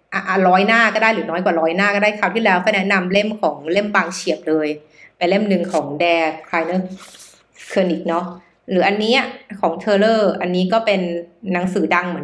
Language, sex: Thai, female